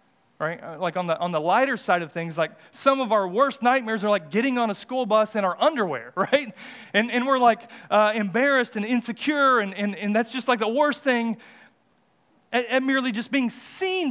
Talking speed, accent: 210 wpm, American